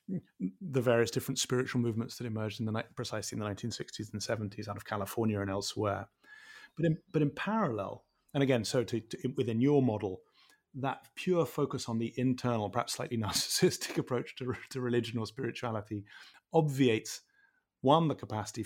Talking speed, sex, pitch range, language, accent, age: 170 wpm, male, 110-135 Hz, English, British, 30-49